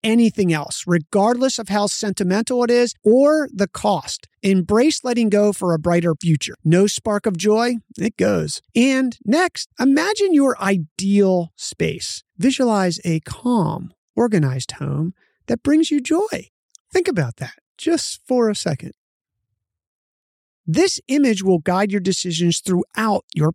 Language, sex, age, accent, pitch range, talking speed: English, male, 30-49, American, 165-235 Hz, 140 wpm